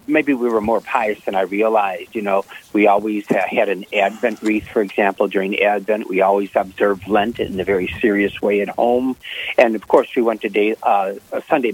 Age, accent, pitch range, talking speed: 60-79, American, 105-145 Hz, 200 wpm